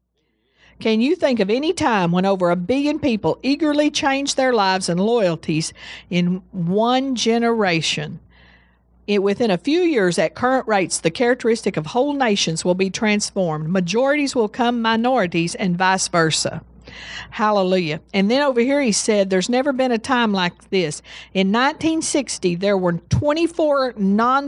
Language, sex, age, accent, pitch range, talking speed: English, female, 50-69, American, 180-250 Hz, 155 wpm